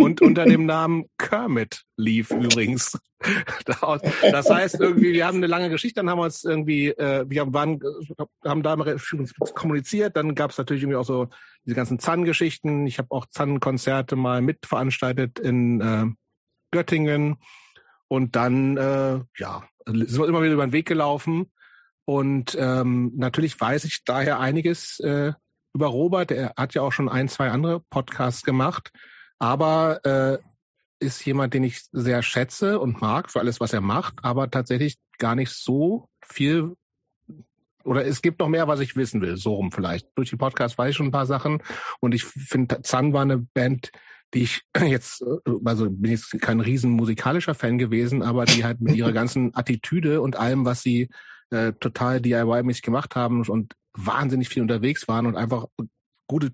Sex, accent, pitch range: male, German, 120-150 Hz